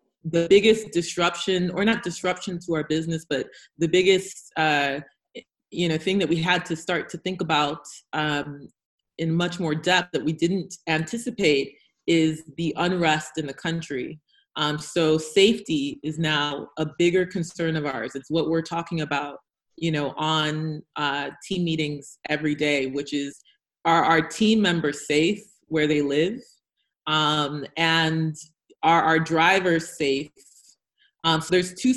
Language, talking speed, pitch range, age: English, 155 wpm, 155-180 Hz, 30-49